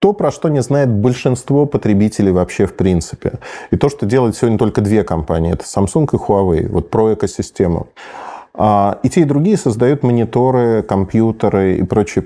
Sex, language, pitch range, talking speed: male, Russian, 95-125 Hz, 165 wpm